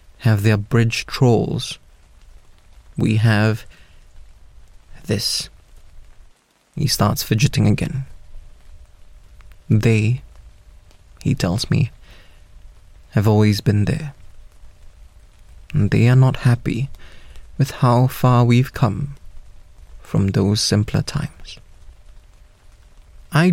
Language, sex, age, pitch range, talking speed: English, male, 30-49, 85-130 Hz, 85 wpm